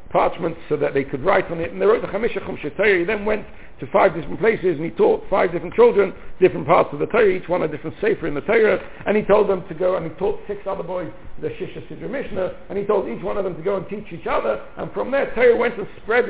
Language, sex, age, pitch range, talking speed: English, male, 60-79, 185-295 Hz, 275 wpm